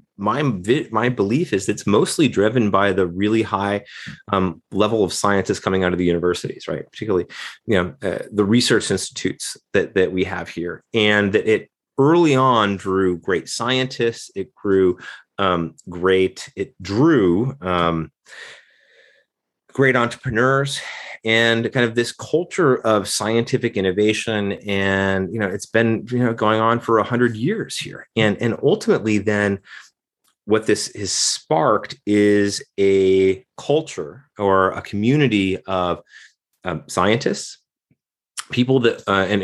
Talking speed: 140 wpm